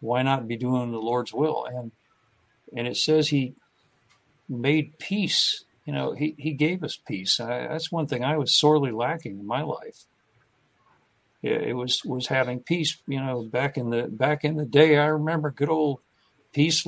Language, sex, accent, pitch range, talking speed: English, male, American, 125-150 Hz, 185 wpm